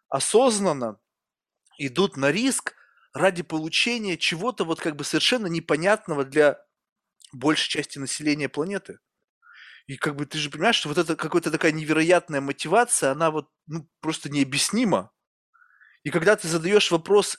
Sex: male